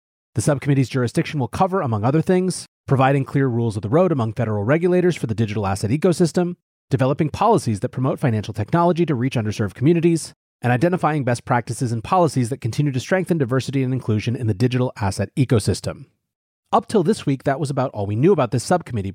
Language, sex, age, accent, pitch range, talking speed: English, male, 30-49, American, 115-165 Hz, 195 wpm